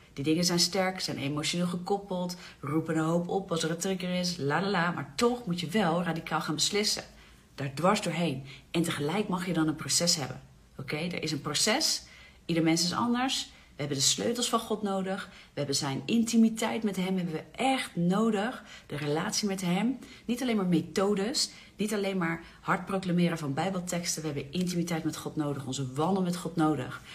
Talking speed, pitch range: 200 wpm, 150-200 Hz